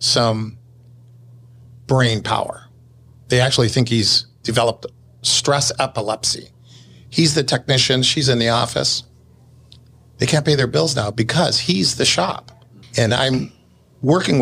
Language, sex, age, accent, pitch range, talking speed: English, male, 50-69, American, 120-140 Hz, 125 wpm